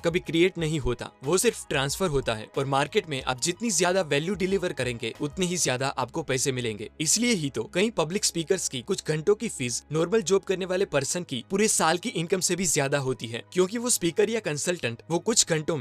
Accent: native